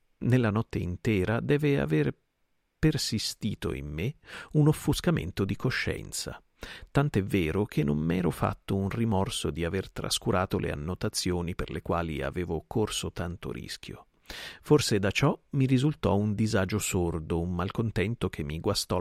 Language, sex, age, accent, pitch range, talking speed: Italian, male, 50-69, native, 85-115 Hz, 140 wpm